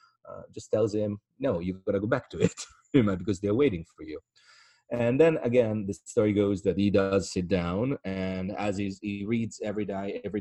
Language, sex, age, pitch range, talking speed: English, male, 30-49, 95-120 Hz, 215 wpm